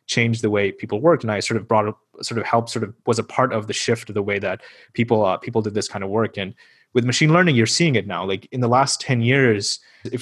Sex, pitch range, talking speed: male, 110-125 Hz, 290 wpm